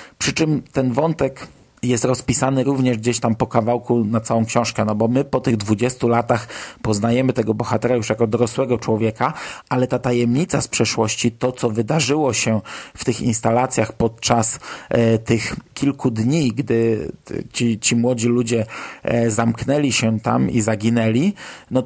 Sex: male